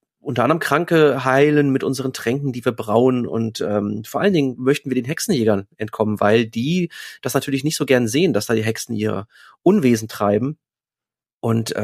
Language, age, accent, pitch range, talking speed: German, 30-49, German, 115-145 Hz, 185 wpm